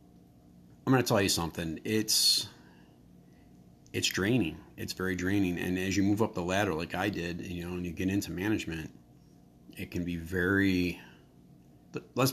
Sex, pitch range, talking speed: male, 80-100 Hz, 165 wpm